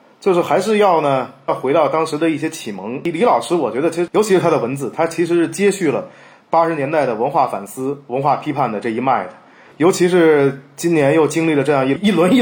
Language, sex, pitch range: Chinese, male, 145-190 Hz